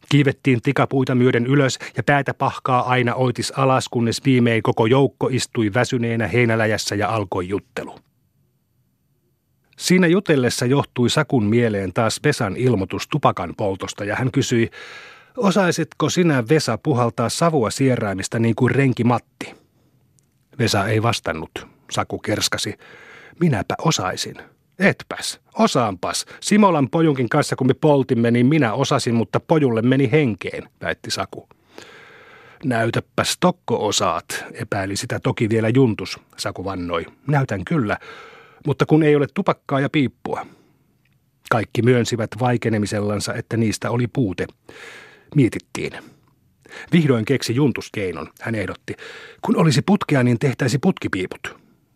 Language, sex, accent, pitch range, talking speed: Finnish, male, native, 115-140 Hz, 120 wpm